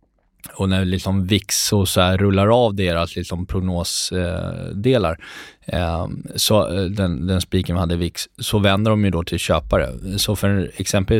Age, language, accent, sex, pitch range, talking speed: 20-39, Swedish, native, male, 90-110 Hz, 150 wpm